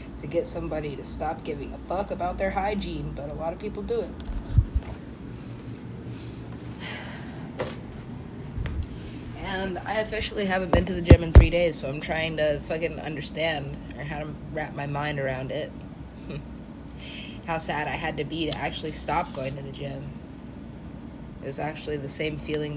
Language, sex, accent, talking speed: English, female, American, 165 wpm